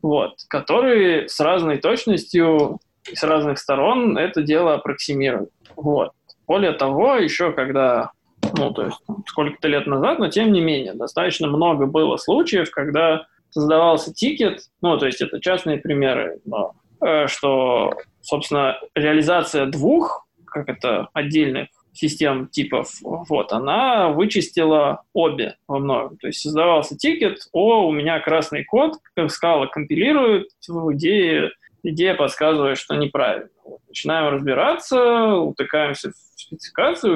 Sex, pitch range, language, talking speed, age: male, 145-200 Hz, Russian, 125 wpm, 20-39